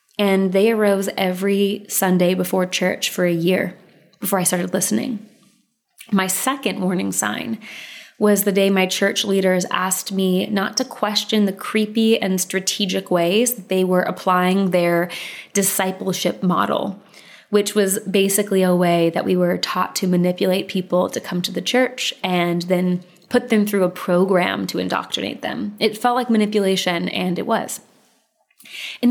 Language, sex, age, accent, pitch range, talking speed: English, female, 20-39, American, 180-210 Hz, 155 wpm